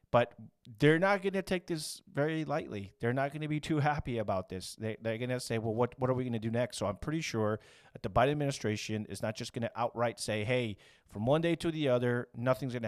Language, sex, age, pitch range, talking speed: English, male, 30-49, 105-135 Hz, 260 wpm